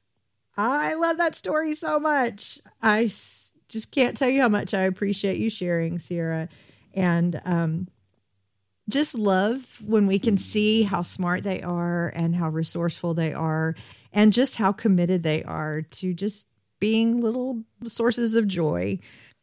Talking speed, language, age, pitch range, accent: 150 wpm, English, 40-59, 160-225 Hz, American